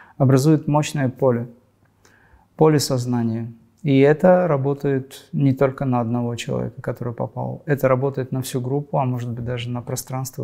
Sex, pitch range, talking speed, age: male, 120-135 Hz, 150 wpm, 20-39